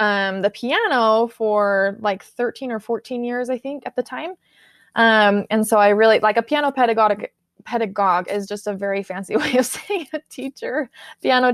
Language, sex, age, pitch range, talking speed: English, female, 20-39, 200-240 Hz, 180 wpm